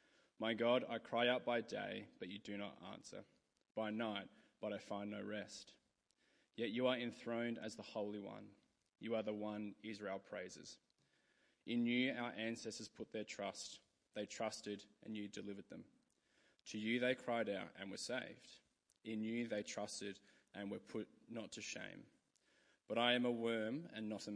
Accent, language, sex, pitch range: Australian, English, male, 105-115 Hz